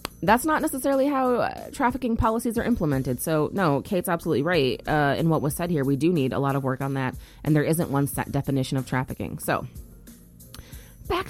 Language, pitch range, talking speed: English, 150-220 Hz, 205 wpm